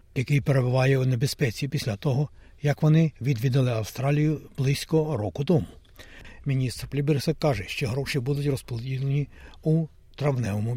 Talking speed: 125 wpm